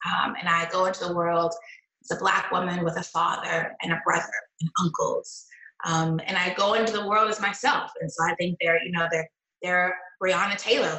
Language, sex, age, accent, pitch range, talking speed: English, female, 20-39, American, 180-255 Hz, 210 wpm